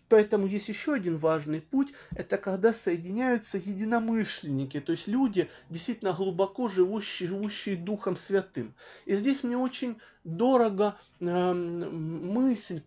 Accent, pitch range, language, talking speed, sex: native, 170-220 Hz, Russian, 120 wpm, male